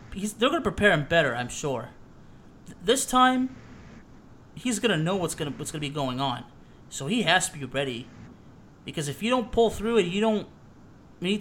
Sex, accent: male, American